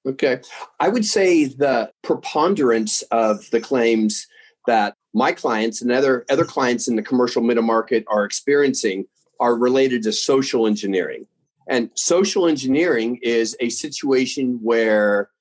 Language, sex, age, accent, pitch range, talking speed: English, male, 40-59, American, 110-140 Hz, 135 wpm